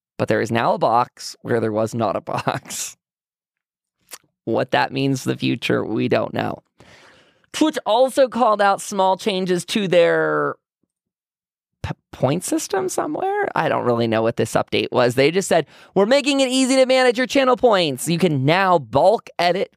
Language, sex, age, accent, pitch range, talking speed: English, male, 20-39, American, 115-185 Hz, 175 wpm